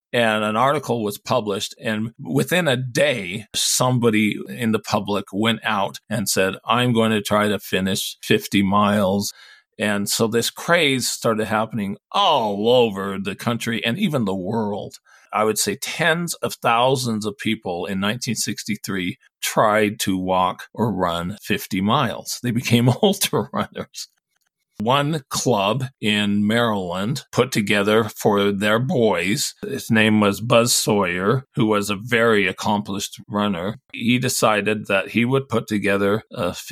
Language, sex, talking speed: English, male, 145 wpm